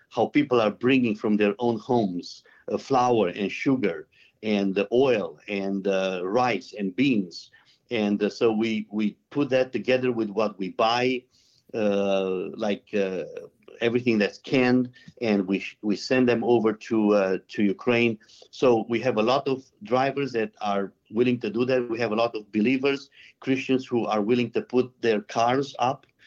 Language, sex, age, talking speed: English, male, 50-69, 175 wpm